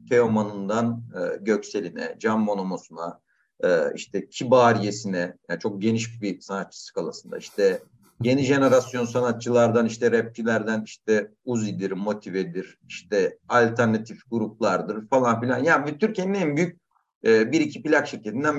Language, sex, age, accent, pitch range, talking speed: Turkish, male, 50-69, native, 115-180 Hz, 120 wpm